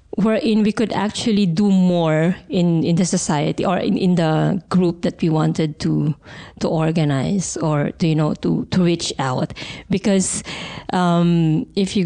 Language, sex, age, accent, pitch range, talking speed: German, female, 20-39, Filipino, 165-210 Hz, 165 wpm